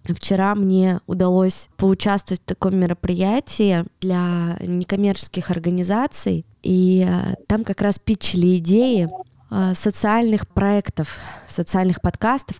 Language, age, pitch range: Russian, 20-39, 165-195 Hz